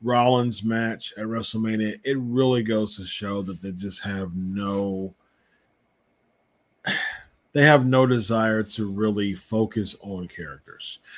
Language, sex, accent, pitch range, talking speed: English, male, American, 115-150 Hz, 125 wpm